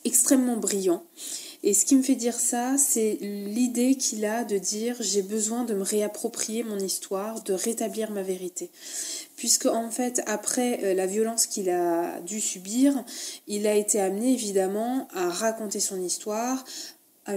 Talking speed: 160 wpm